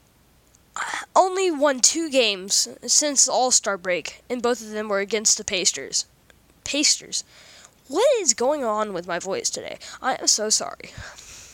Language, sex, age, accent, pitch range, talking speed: English, female, 10-29, American, 210-290 Hz, 145 wpm